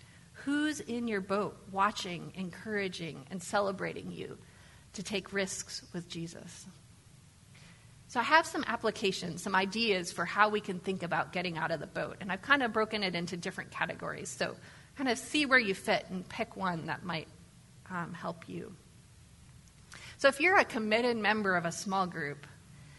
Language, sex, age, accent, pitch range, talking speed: English, female, 30-49, American, 180-235 Hz, 170 wpm